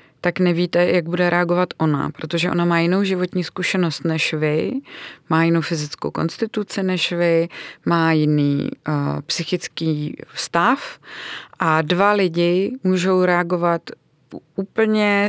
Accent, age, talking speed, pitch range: native, 30-49, 120 wpm, 160-180 Hz